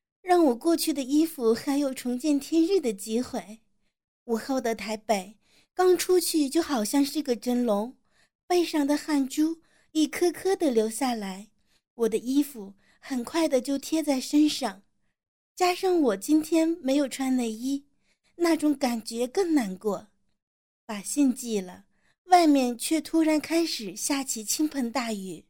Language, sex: Chinese, female